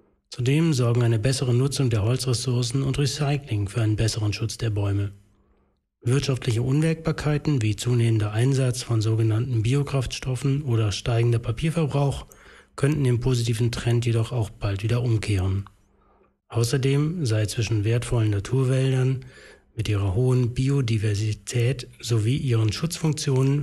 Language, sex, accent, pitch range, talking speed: German, male, German, 110-135 Hz, 120 wpm